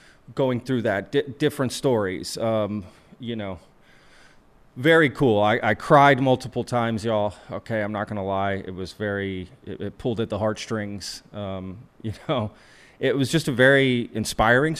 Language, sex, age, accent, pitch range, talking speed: English, male, 30-49, American, 100-125 Hz, 160 wpm